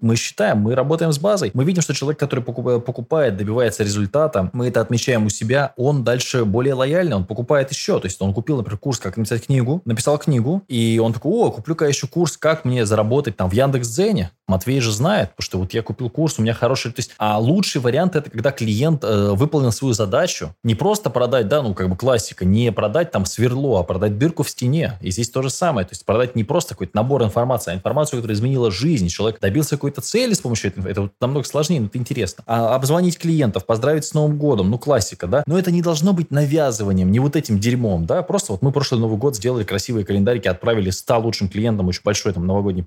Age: 20-39